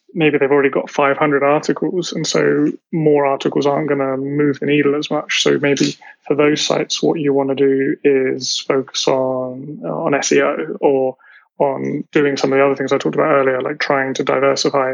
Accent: British